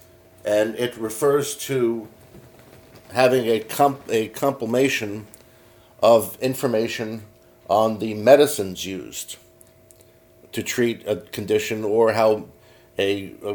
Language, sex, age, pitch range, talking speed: English, male, 50-69, 105-125 Hz, 95 wpm